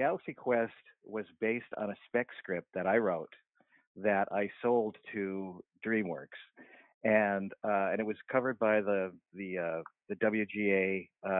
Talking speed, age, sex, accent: 145 wpm, 50-69, male, American